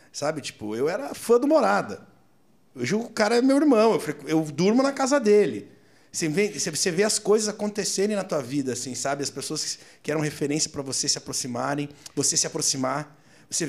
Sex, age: male, 50-69